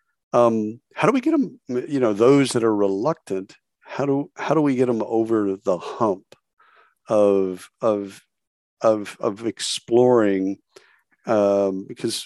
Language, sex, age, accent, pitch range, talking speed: English, male, 50-69, American, 100-115 Hz, 140 wpm